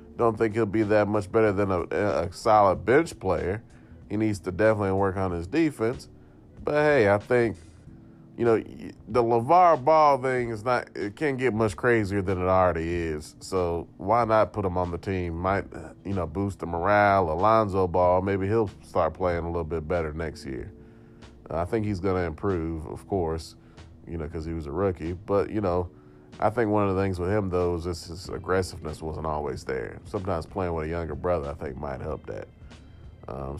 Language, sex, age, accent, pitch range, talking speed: English, male, 30-49, American, 85-110 Hz, 200 wpm